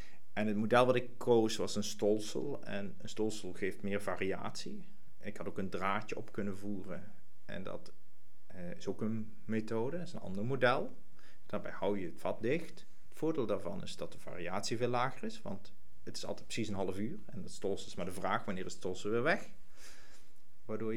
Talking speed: 205 wpm